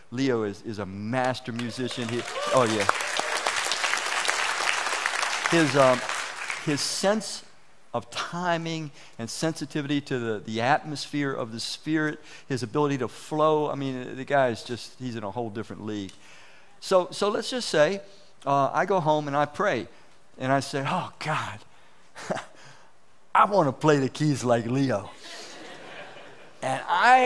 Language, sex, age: English, male, 50-69